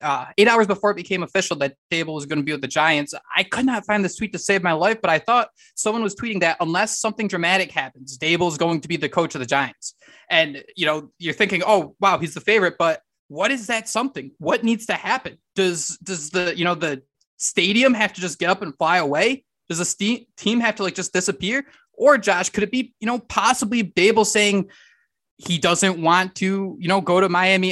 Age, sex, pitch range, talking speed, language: 20-39, male, 165-205 Hz, 235 wpm, English